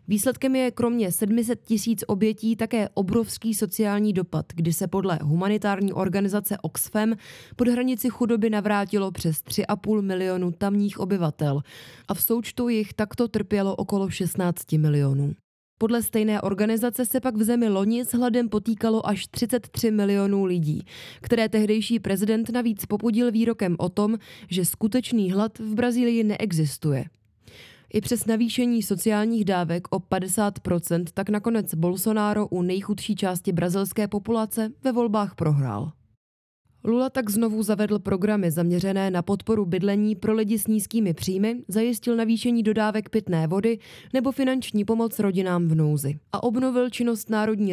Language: Czech